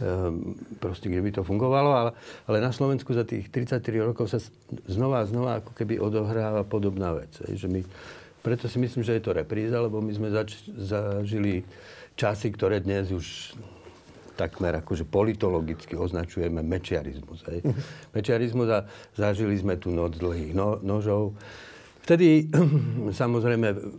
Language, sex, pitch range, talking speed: Slovak, male, 95-115 Hz, 145 wpm